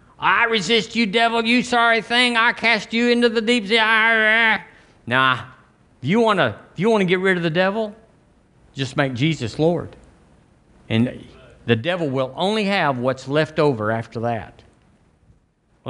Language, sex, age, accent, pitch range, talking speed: English, male, 50-69, American, 125-175 Hz, 150 wpm